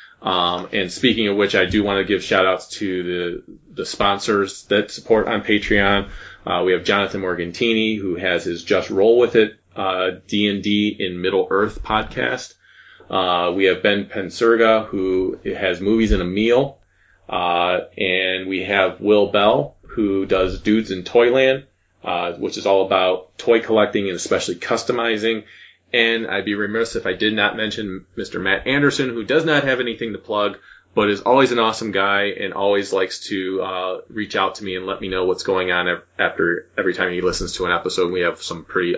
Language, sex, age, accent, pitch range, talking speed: English, male, 30-49, American, 95-110 Hz, 190 wpm